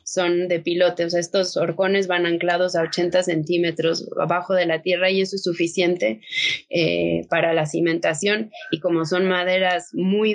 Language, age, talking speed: Spanish, 20-39, 170 wpm